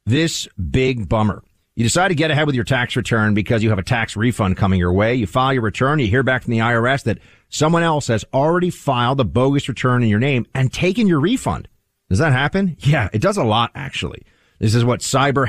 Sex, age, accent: male, 40-59, American